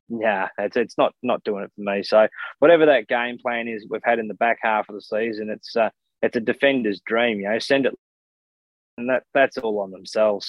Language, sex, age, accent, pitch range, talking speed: English, male, 20-39, Australian, 110-125 Hz, 230 wpm